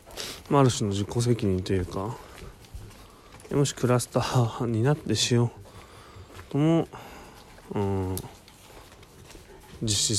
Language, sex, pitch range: Japanese, male, 95-125 Hz